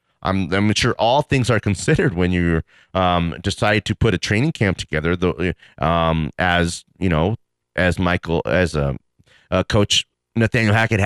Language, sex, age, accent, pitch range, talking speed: English, male, 30-49, American, 90-140 Hz, 170 wpm